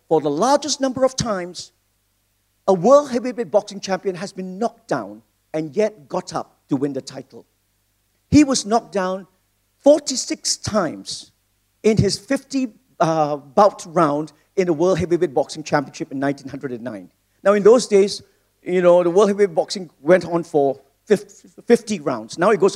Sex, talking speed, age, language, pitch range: male, 160 wpm, 50-69, English, 135-215 Hz